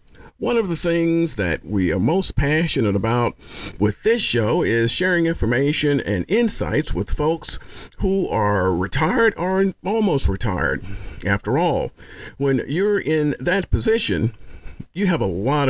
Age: 50-69